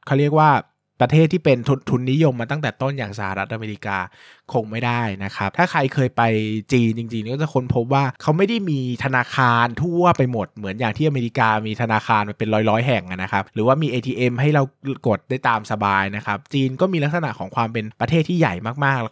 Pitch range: 110-140 Hz